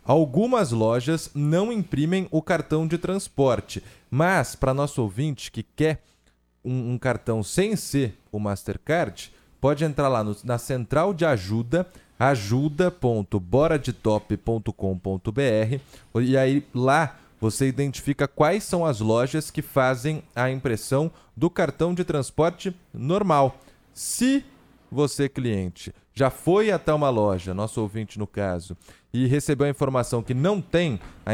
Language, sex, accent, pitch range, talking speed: Portuguese, male, Brazilian, 115-155 Hz, 130 wpm